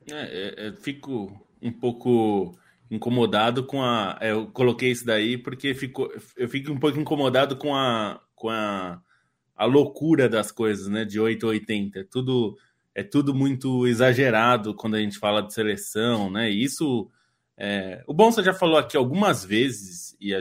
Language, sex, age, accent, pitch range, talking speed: Portuguese, male, 20-39, Brazilian, 105-140 Hz, 175 wpm